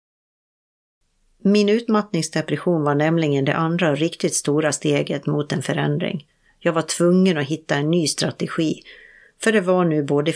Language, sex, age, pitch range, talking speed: Swedish, female, 50-69, 145-180 Hz, 150 wpm